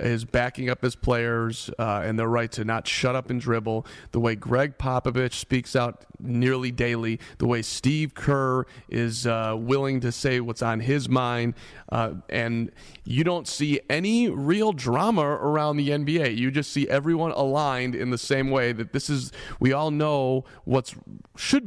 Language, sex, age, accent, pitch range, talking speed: English, male, 30-49, American, 120-140 Hz, 175 wpm